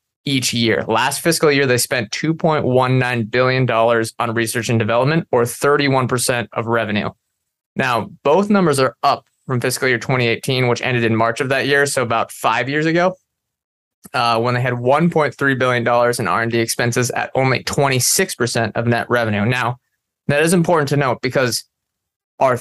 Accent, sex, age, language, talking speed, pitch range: American, male, 20-39, English, 160 wpm, 115-140 Hz